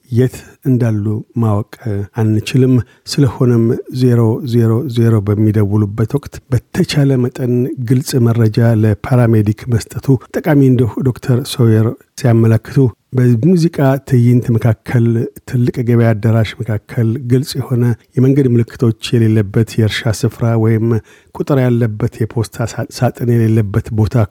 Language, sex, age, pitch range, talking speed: Amharic, male, 50-69, 110-130 Hz, 95 wpm